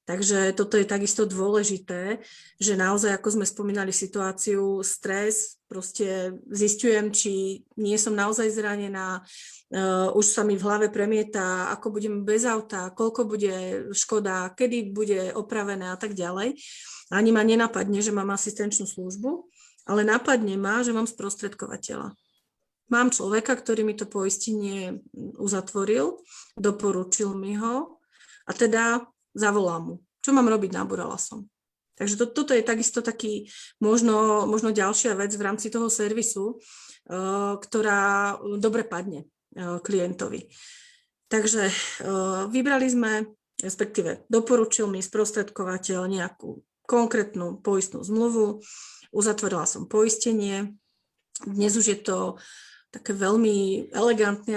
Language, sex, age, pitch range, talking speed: Slovak, female, 30-49, 195-225 Hz, 125 wpm